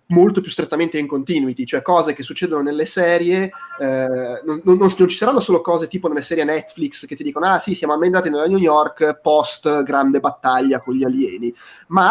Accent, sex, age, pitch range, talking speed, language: native, male, 20-39, 135-180 Hz, 200 wpm, Italian